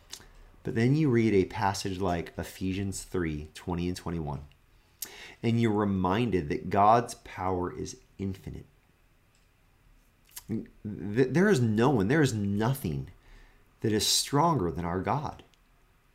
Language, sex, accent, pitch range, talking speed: English, male, American, 95-135 Hz, 125 wpm